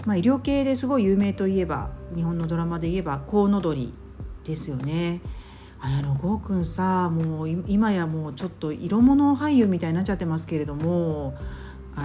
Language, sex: Japanese, female